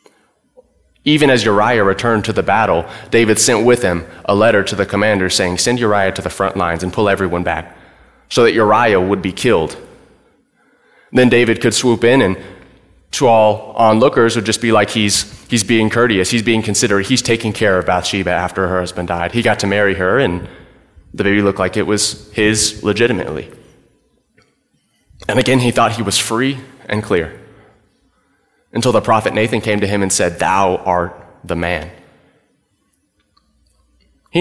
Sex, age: male, 30-49